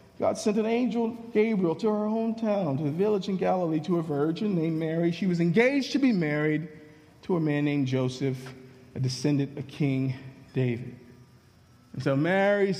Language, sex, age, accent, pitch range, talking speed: English, male, 40-59, American, 160-215 Hz, 175 wpm